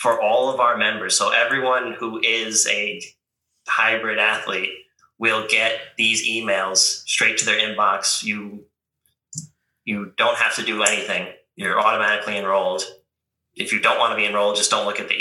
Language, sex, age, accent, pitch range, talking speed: English, male, 20-39, American, 95-115 Hz, 165 wpm